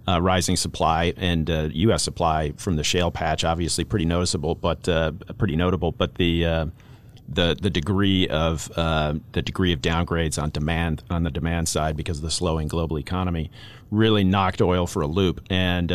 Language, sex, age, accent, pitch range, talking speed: English, male, 40-59, American, 85-110 Hz, 185 wpm